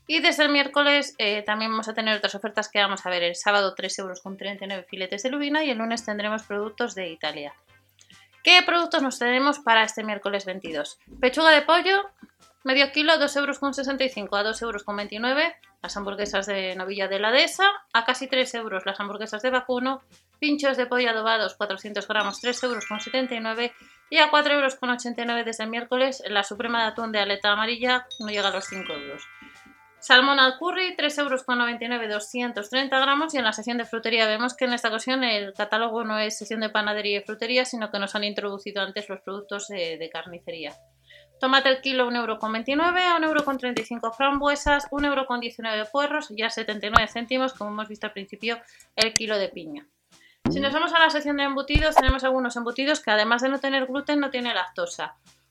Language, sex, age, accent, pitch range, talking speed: Spanish, female, 30-49, Spanish, 205-270 Hz, 185 wpm